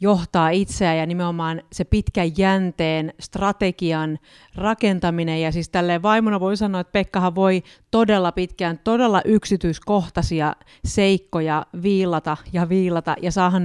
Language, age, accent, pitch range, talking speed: Finnish, 40-59, native, 160-195 Hz, 125 wpm